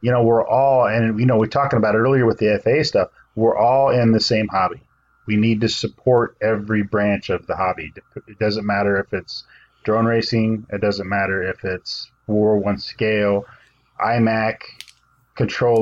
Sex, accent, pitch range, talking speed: male, American, 105-120 Hz, 185 wpm